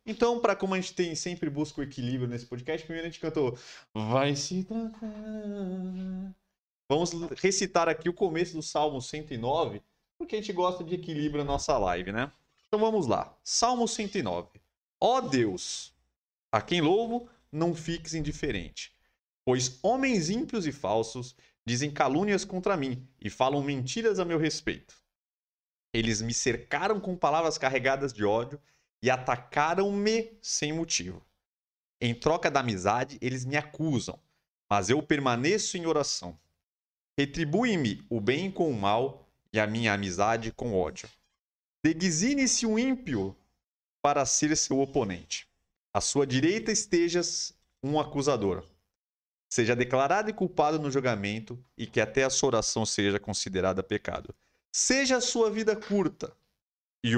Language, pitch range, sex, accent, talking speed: Portuguese, 115-185 Hz, male, Brazilian, 135 wpm